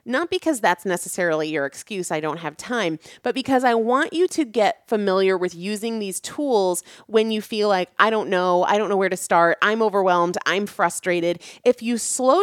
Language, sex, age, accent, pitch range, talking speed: English, female, 30-49, American, 175-240 Hz, 205 wpm